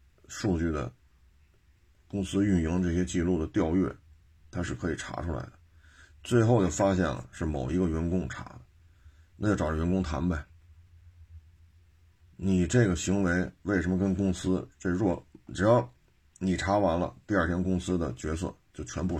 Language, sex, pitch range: Chinese, male, 75-95 Hz